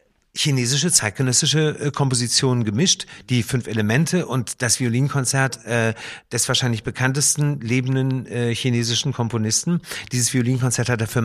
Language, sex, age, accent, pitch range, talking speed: German, male, 50-69, German, 115-145 Hz, 125 wpm